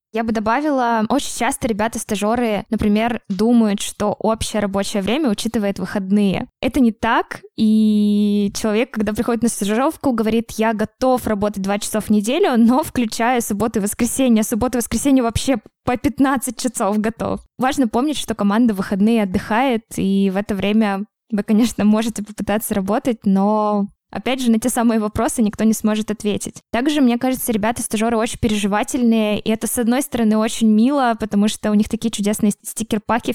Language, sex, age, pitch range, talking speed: Russian, female, 20-39, 205-240 Hz, 165 wpm